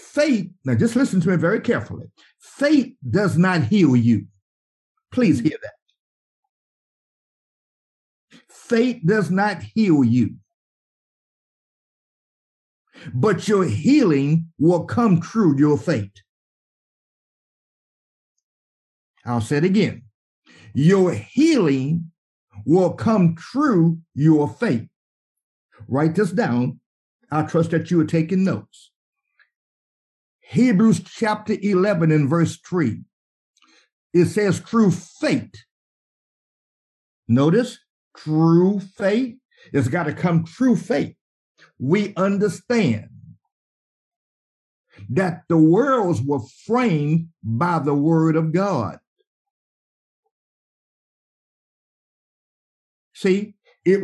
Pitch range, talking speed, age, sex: 150-225 Hz, 90 wpm, 50-69, male